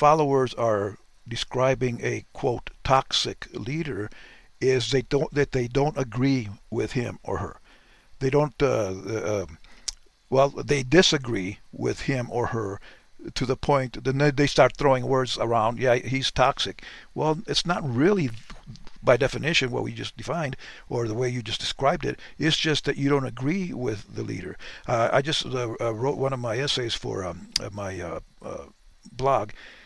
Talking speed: 165 wpm